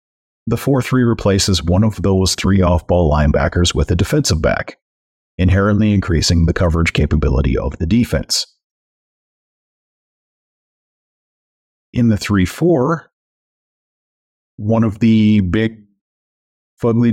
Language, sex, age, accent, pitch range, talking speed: English, male, 40-59, American, 80-110 Hz, 100 wpm